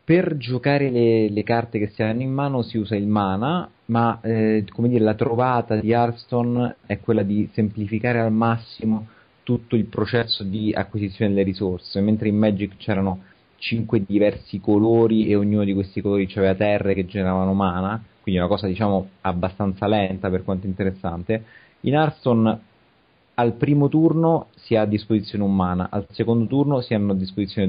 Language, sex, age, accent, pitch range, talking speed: Italian, male, 30-49, native, 100-120 Hz, 170 wpm